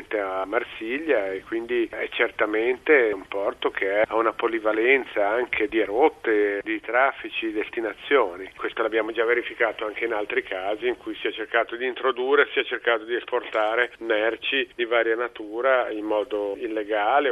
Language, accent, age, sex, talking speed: Italian, native, 40-59, male, 160 wpm